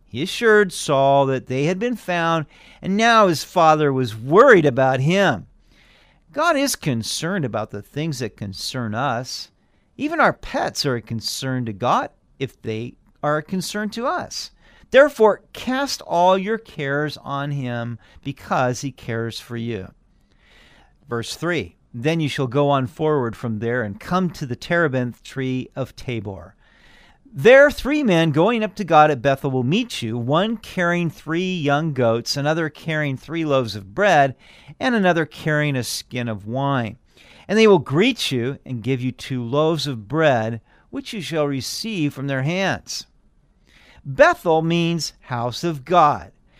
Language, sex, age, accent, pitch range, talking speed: English, male, 50-69, American, 125-175 Hz, 160 wpm